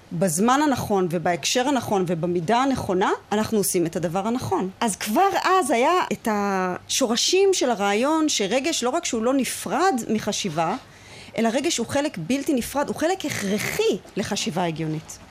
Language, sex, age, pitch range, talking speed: Hebrew, female, 30-49, 205-300 Hz, 145 wpm